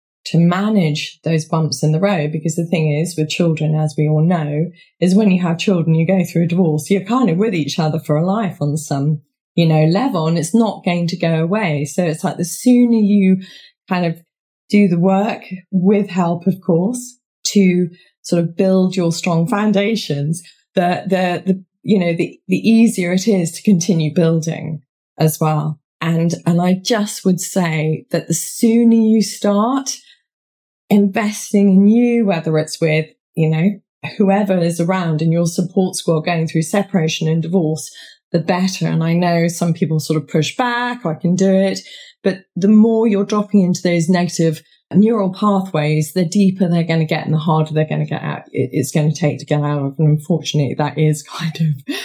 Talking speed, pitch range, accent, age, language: 195 wpm, 160-195 Hz, British, 20-39, English